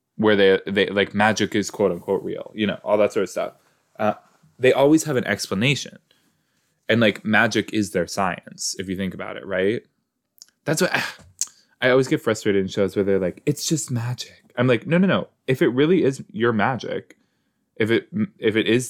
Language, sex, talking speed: English, male, 200 wpm